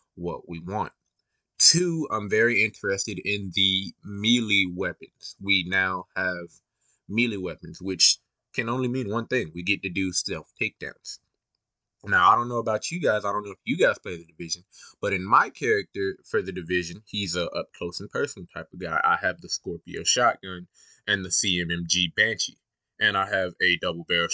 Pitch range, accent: 95-140 Hz, American